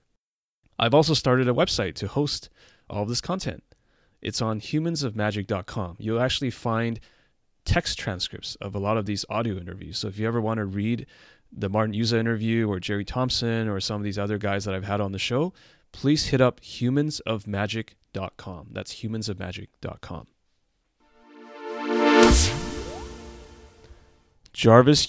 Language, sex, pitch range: English, male, 95-120 Hz